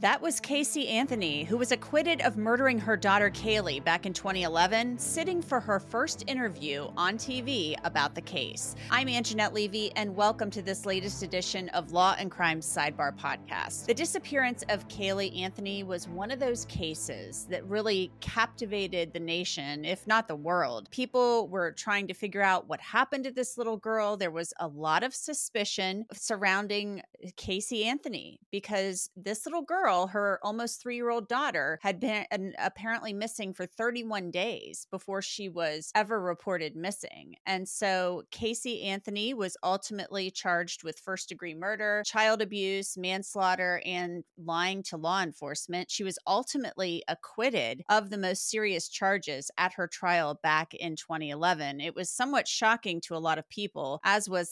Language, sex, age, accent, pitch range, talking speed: English, female, 30-49, American, 180-225 Hz, 160 wpm